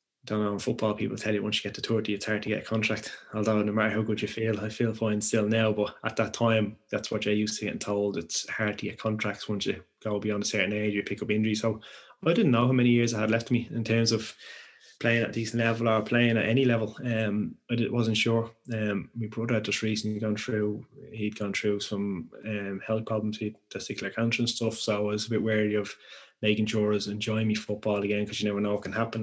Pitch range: 105-115 Hz